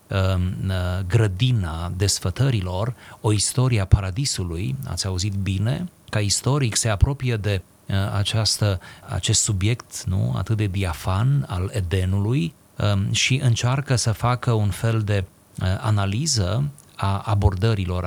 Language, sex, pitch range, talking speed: Romanian, male, 95-115 Hz, 100 wpm